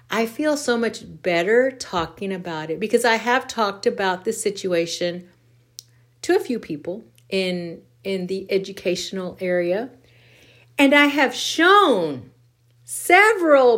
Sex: female